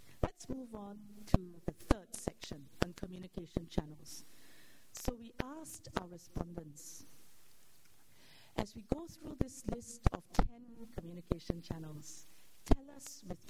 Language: English